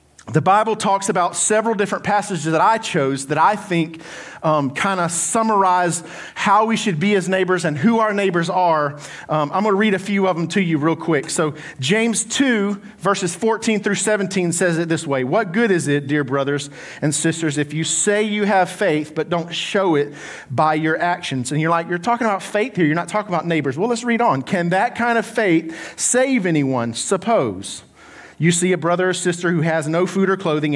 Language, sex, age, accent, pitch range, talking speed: English, male, 40-59, American, 160-225 Hz, 215 wpm